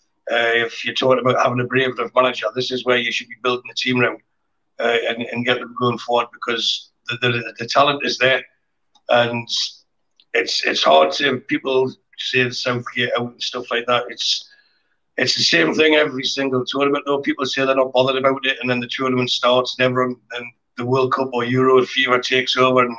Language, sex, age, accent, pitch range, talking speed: English, male, 60-79, British, 120-135 Hz, 210 wpm